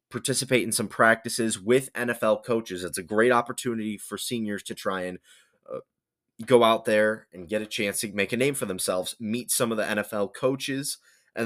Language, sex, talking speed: English, male, 195 wpm